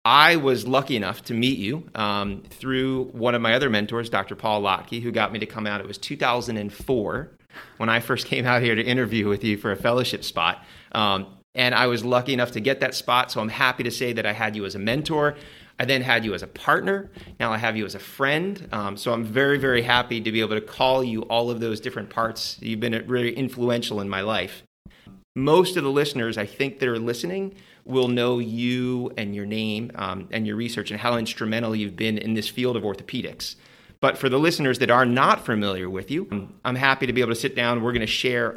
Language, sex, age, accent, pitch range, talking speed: English, male, 30-49, American, 105-125 Hz, 235 wpm